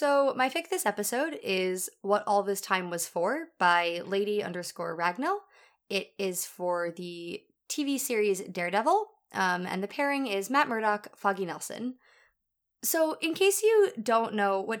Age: 20-39